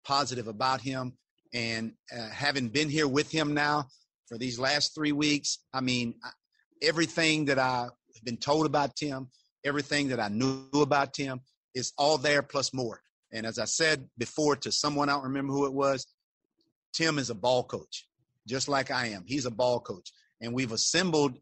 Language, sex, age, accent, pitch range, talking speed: English, male, 50-69, American, 125-155 Hz, 180 wpm